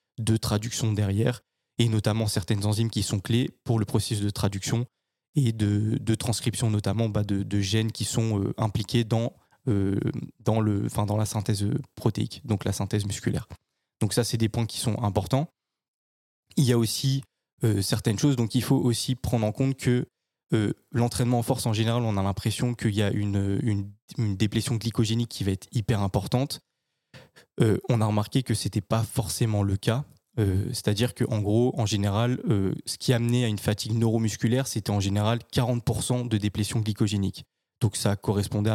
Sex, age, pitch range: male, 20-39, 105-120 Hz